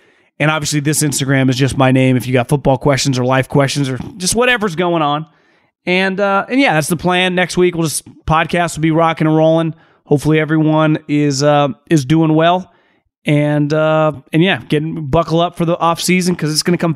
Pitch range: 155-215 Hz